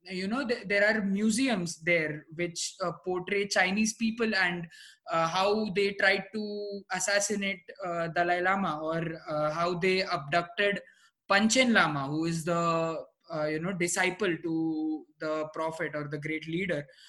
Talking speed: 150 wpm